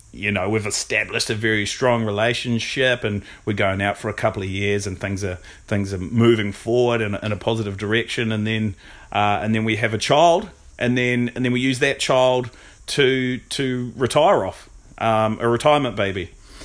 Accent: Australian